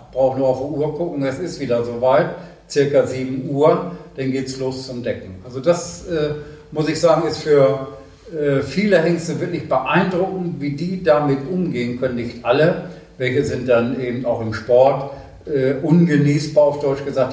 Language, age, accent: German, 50-69, German